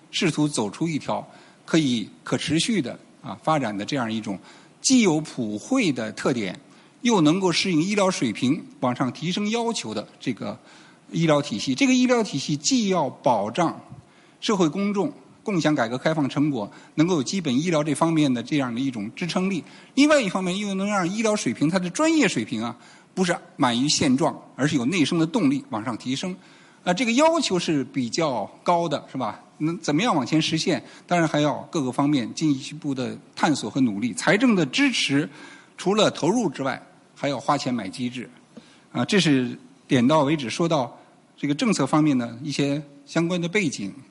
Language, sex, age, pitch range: Chinese, male, 50-69, 145-200 Hz